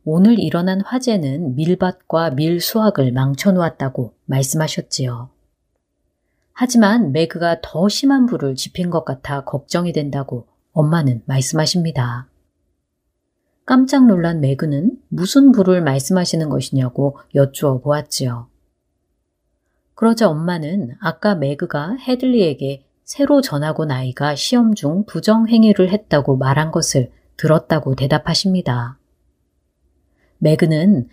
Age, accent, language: 30-49, native, Korean